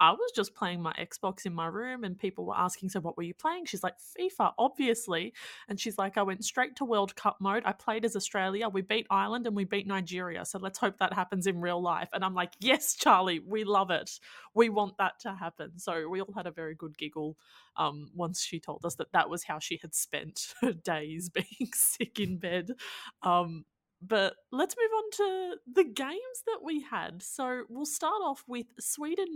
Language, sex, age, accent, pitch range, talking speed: English, female, 20-39, Australian, 185-245 Hz, 220 wpm